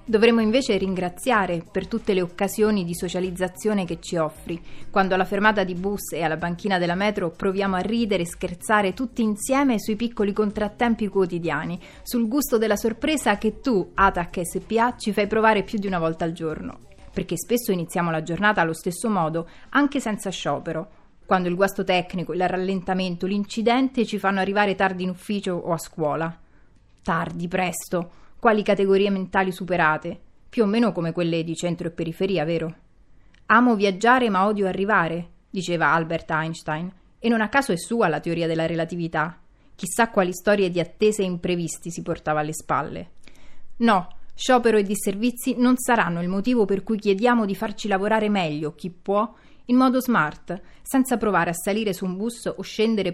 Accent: native